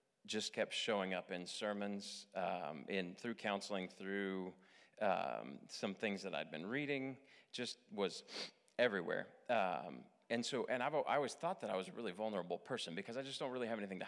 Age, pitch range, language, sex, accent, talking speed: 30-49, 95-120 Hz, English, male, American, 185 wpm